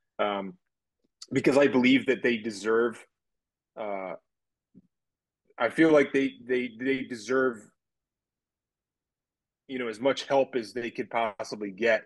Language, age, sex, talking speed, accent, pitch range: English, 30-49, male, 125 wpm, American, 105-130 Hz